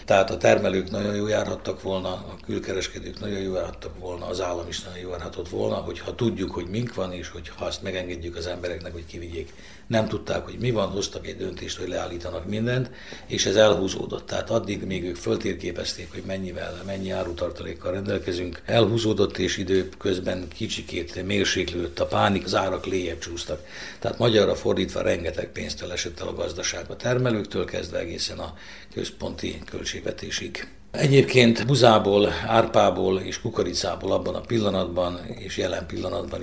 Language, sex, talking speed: Hungarian, male, 150 wpm